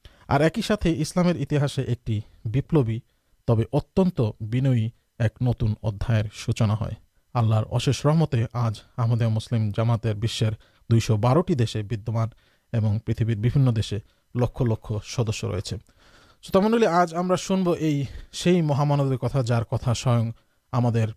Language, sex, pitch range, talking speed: Urdu, male, 115-140 Hz, 105 wpm